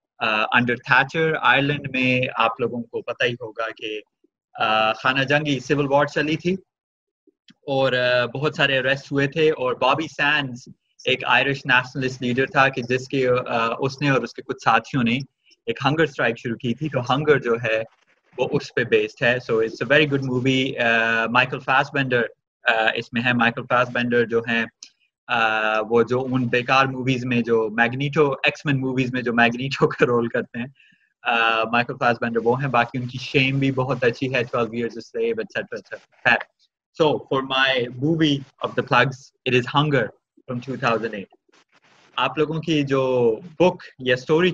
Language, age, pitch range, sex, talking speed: Urdu, 20-39, 120-145 Hz, male, 80 wpm